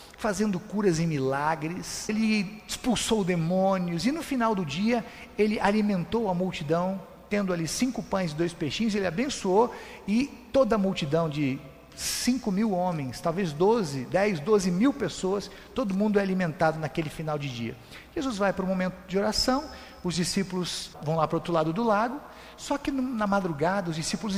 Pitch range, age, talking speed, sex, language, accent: 170-215 Hz, 50-69, 170 wpm, male, Portuguese, Brazilian